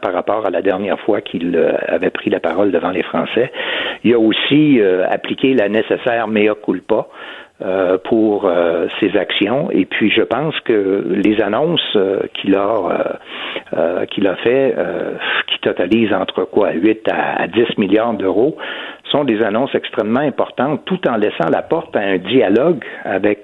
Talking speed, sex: 170 wpm, male